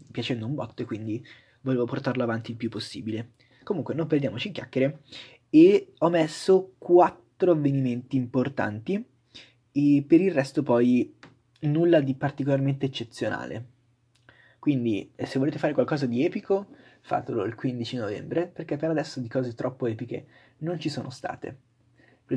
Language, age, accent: Italian, 20-39, native